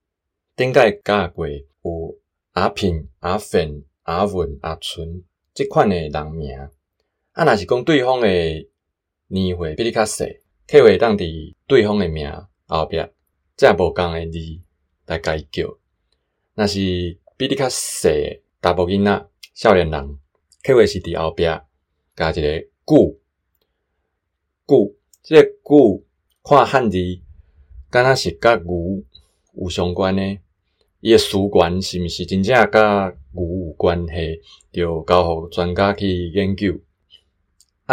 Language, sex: Chinese, male